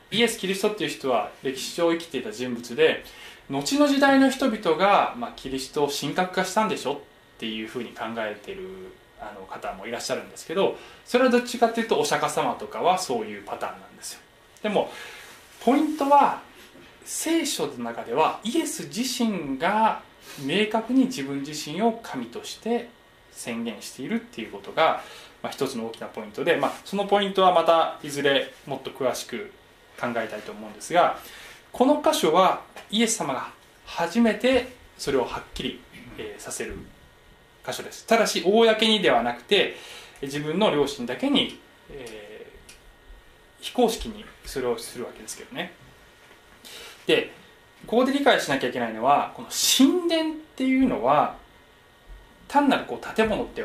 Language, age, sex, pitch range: Japanese, 20-39, male, 165-265 Hz